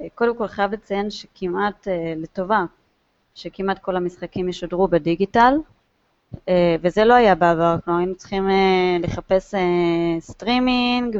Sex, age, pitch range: female, 20-39, 175-215 Hz